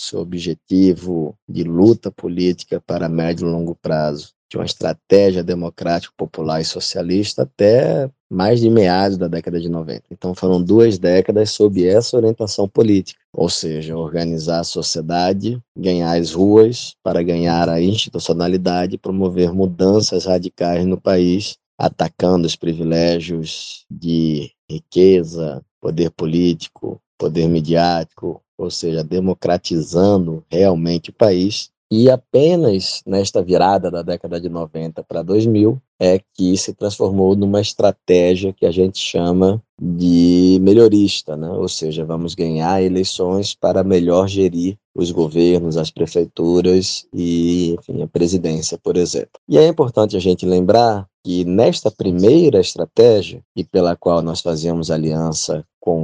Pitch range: 85-95 Hz